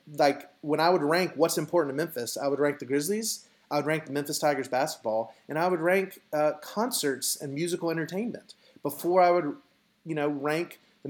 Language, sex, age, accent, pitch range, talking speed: English, male, 30-49, American, 140-175 Hz, 200 wpm